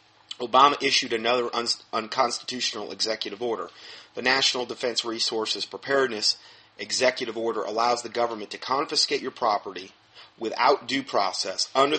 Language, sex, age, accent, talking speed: English, male, 30-49, American, 120 wpm